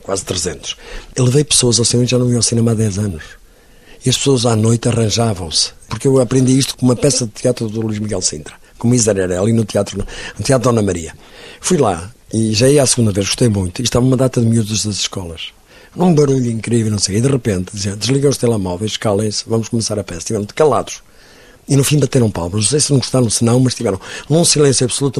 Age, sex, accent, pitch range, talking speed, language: 50-69, male, Portuguese, 100-130 Hz, 235 wpm, Portuguese